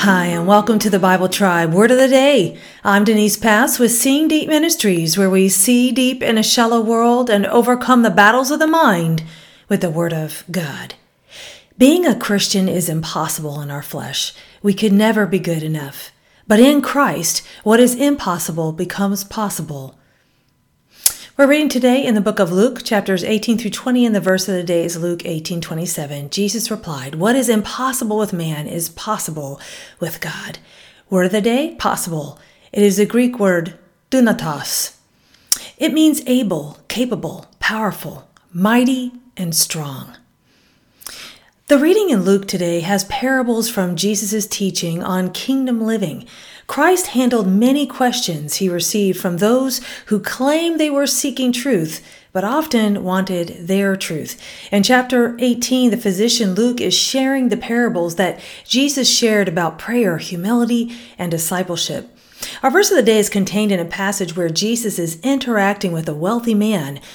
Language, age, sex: English, 40-59, female